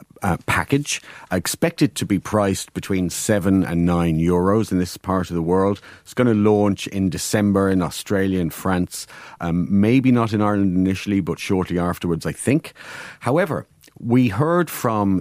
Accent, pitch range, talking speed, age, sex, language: Irish, 85-110 Hz, 165 wpm, 40-59, male, English